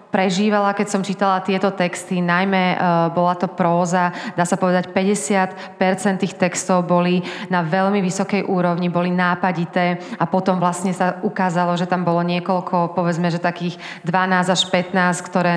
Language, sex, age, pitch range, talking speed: Slovak, female, 30-49, 175-190 Hz, 150 wpm